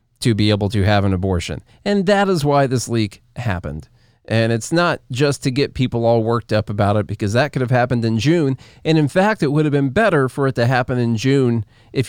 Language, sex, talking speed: English, male, 240 wpm